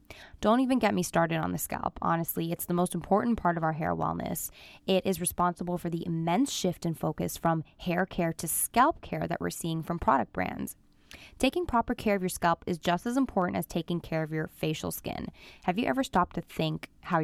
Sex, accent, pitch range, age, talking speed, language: female, American, 165-200 Hz, 10-29, 220 wpm, English